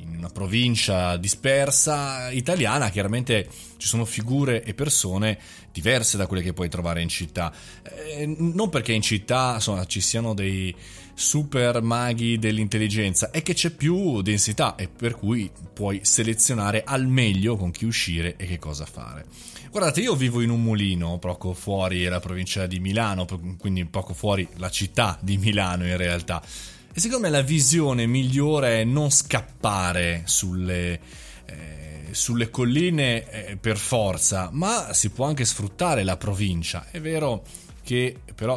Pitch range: 95-130 Hz